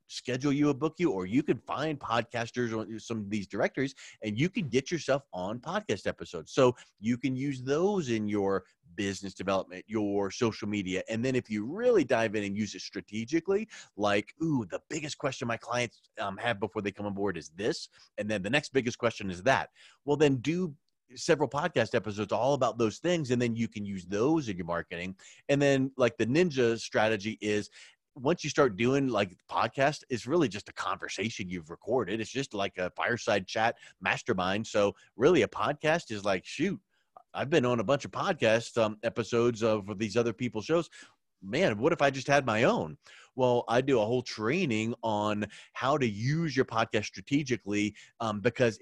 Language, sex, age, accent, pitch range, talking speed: English, male, 30-49, American, 105-145 Hz, 195 wpm